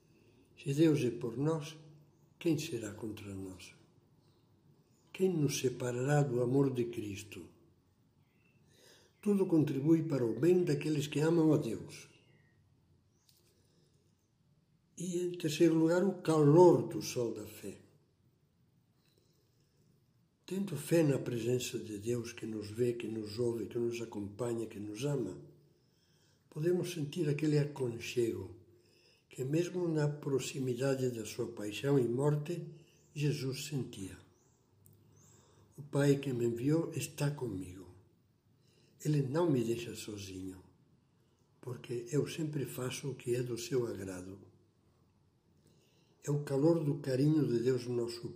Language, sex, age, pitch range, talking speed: Portuguese, male, 60-79, 115-150 Hz, 125 wpm